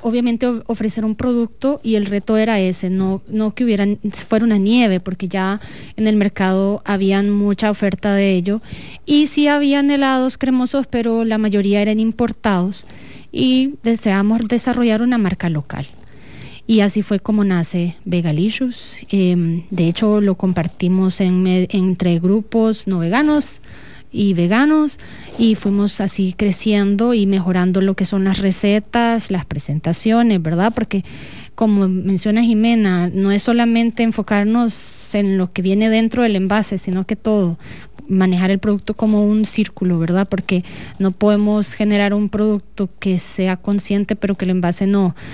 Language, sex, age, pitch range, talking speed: English, female, 30-49, 185-220 Hz, 150 wpm